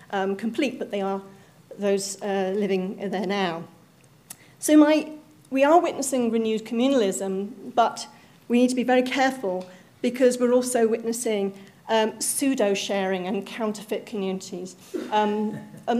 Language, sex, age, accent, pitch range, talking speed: English, female, 40-59, British, 195-245 Hz, 135 wpm